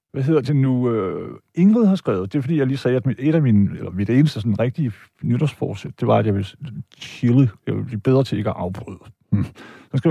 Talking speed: 245 wpm